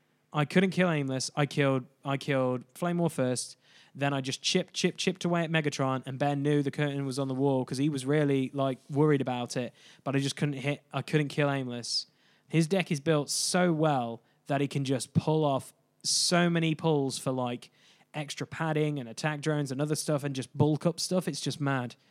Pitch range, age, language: 130-150 Hz, 10-29, English